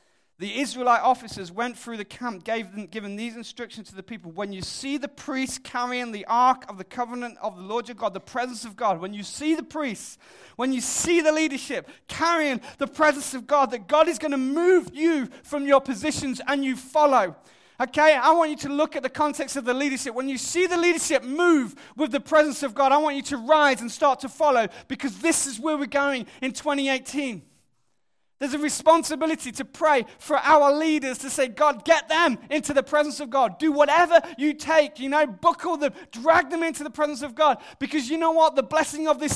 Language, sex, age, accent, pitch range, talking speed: English, male, 30-49, British, 250-310 Hz, 215 wpm